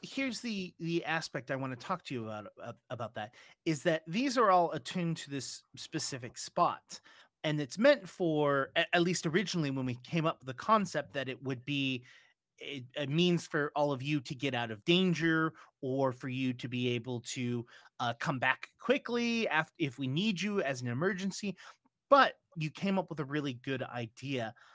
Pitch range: 135-180 Hz